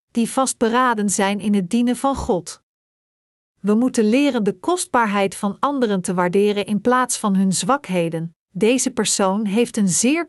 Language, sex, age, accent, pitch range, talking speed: Dutch, female, 40-59, Dutch, 200-250 Hz, 155 wpm